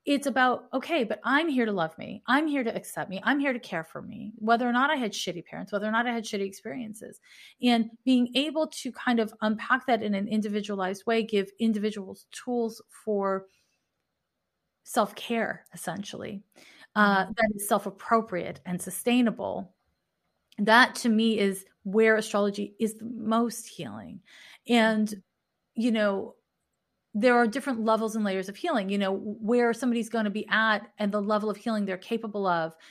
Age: 30-49